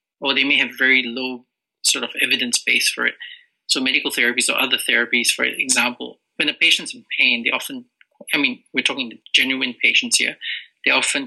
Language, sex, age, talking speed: English, male, 30-49, 190 wpm